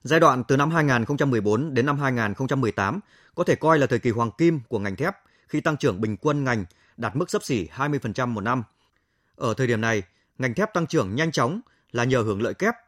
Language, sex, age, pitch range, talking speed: Vietnamese, male, 20-39, 115-150 Hz, 220 wpm